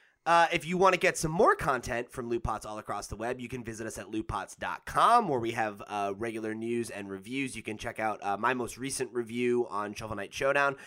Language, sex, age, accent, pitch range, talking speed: English, male, 30-49, American, 115-155 Hz, 230 wpm